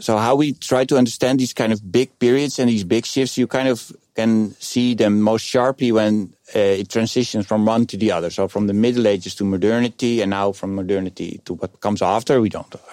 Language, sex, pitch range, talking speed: Dutch, male, 105-125 Hz, 225 wpm